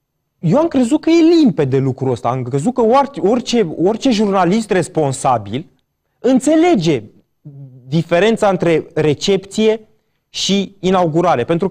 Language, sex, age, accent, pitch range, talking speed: Romanian, male, 20-39, native, 155-215 Hz, 115 wpm